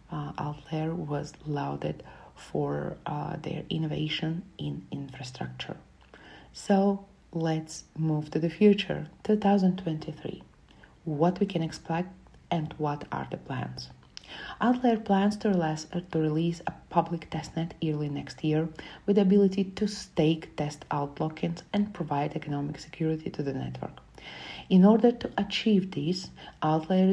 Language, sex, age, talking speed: English, female, 40-59, 125 wpm